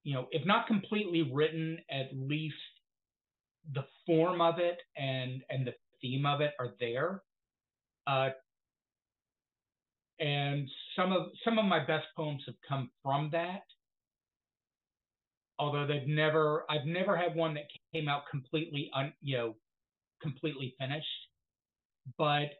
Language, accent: English, American